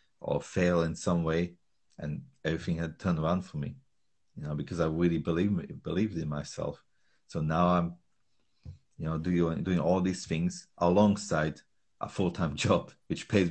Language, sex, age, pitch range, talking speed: English, male, 30-49, 80-90 Hz, 170 wpm